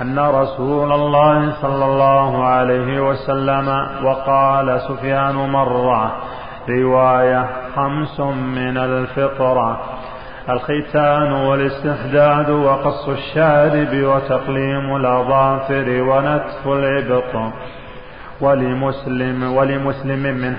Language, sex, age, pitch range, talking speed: Arabic, male, 40-59, 130-140 Hz, 75 wpm